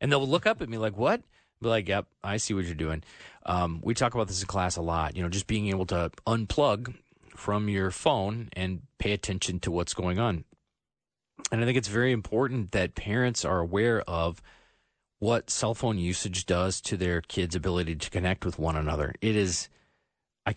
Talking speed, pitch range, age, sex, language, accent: 205 wpm, 90-110 Hz, 30-49, male, English, American